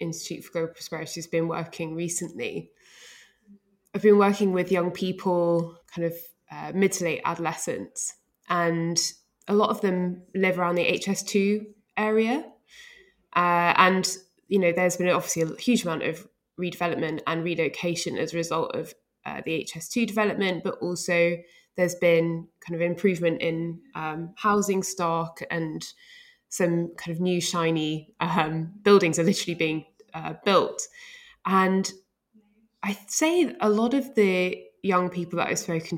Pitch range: 170-205 Hz